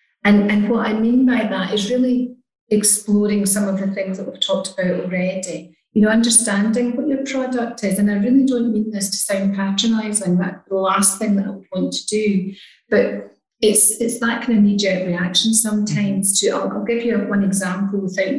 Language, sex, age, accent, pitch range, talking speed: English, female, 40-59, British, 195-225 Hz, 200 wpm